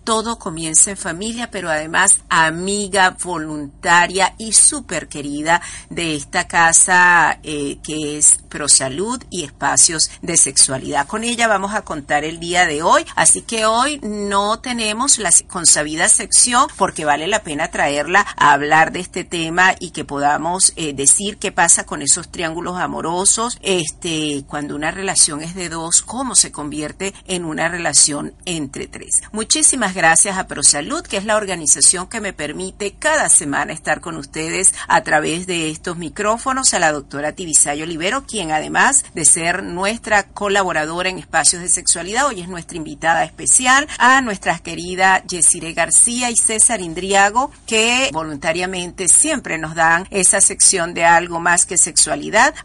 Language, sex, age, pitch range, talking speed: Spanish, female, 50-69, 160-205 Hz, 155 wpm